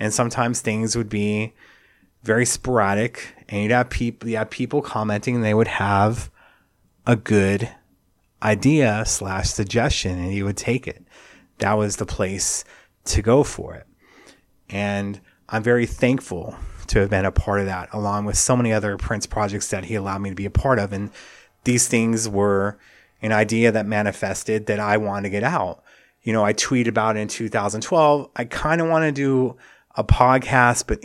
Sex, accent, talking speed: male, American, 180 wpm